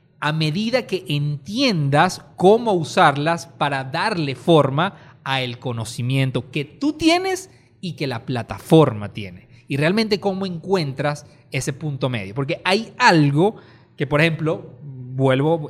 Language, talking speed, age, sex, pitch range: Spanish, 125 wpm, 30-49, male, 140-195 Hz